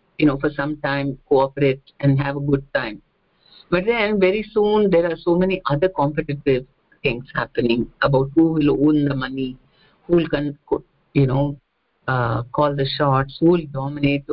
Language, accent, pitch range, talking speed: English, Indian, 140-175 Hz, 170 wpm